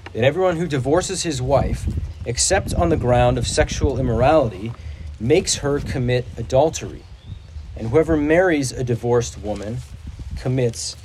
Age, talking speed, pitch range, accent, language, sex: 40-59, 130 wpm, 100-140 Hz, American, English, male